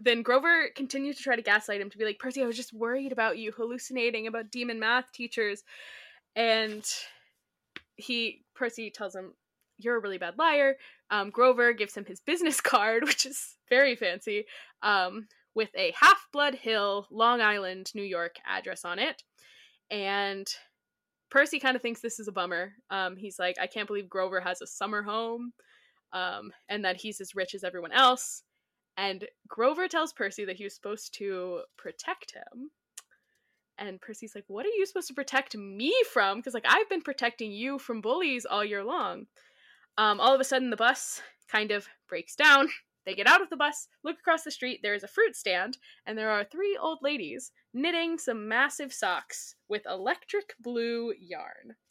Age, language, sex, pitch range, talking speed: 10-29, English, female, 205-275 Hz, 185 wpm